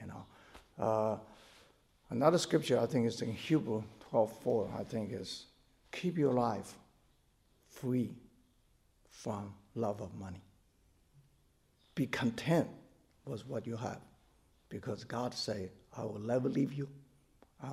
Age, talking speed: 60-79, 125 wpm